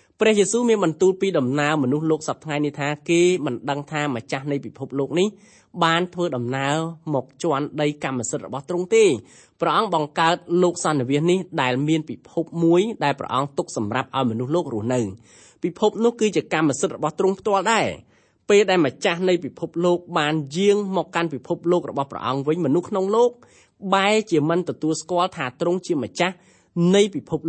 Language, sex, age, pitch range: English, male, 20-39, 140-185 Hz